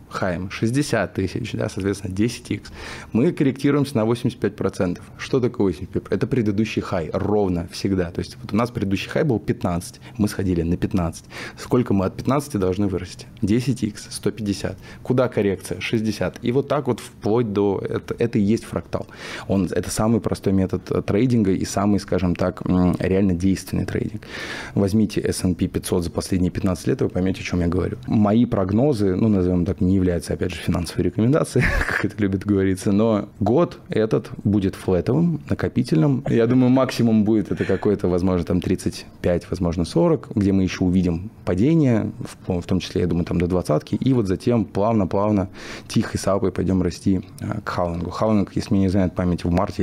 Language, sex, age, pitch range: Russian, male, 20-39, 95-115 Hz